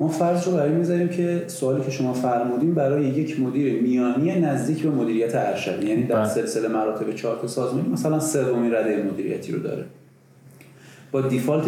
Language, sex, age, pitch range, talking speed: Persian, male, 30-49, 115-155 Hz, 165 wpm